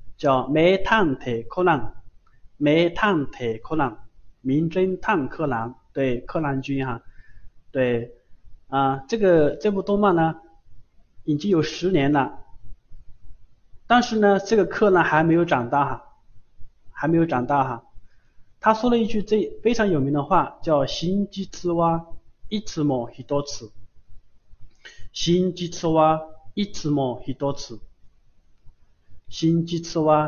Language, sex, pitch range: Chinese, male, 105-155 Hz